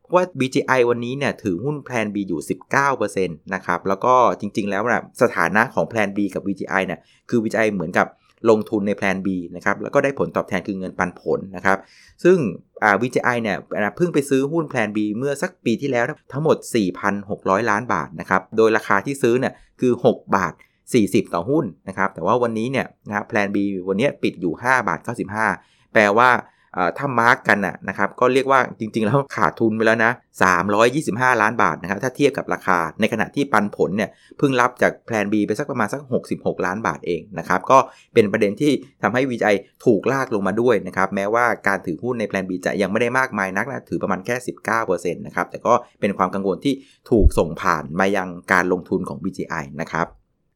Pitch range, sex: 95-125 Hz, male